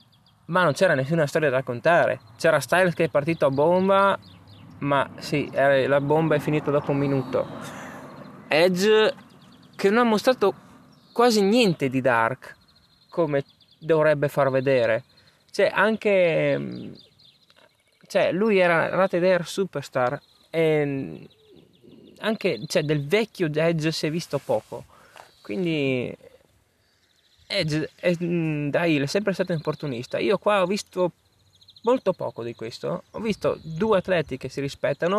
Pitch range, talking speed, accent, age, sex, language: 135-185 Hz, 135 wpm, native, 20-39, male, Italian